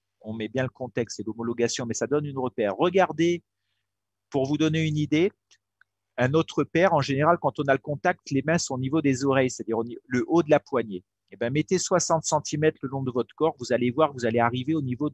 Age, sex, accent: 40-59, male, French